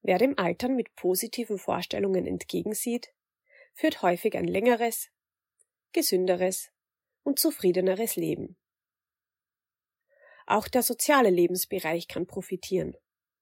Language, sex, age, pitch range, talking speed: German, female, 30-49, 185-250 Hz, 95 wpm